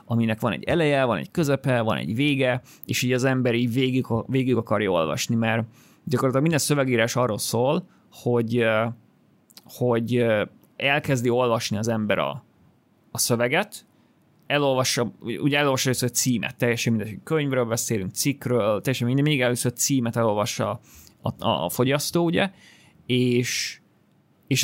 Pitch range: 115-140 Hz